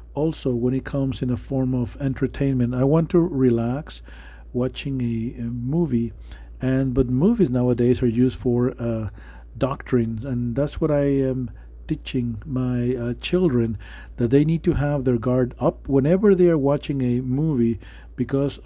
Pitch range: 115-140 Hz